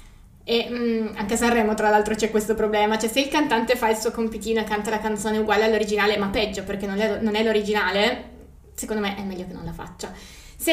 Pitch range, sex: 205-230 Hz, female